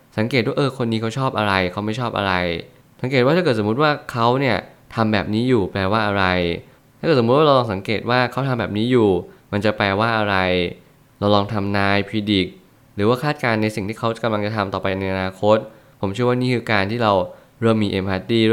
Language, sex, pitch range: Thai, male, 100-115 Hz